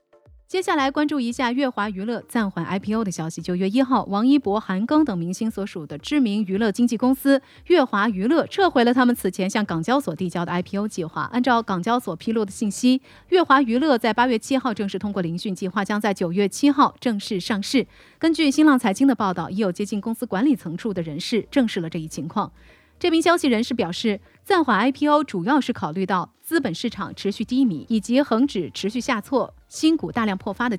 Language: Chinese